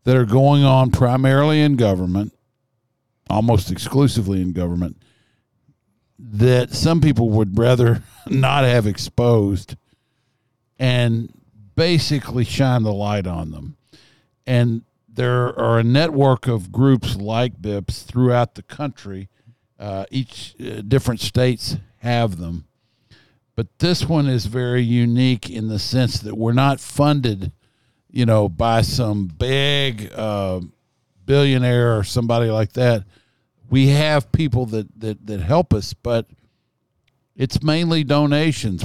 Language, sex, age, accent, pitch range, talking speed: English, male, 50-69, American, 110-135 Hz, 125 wpm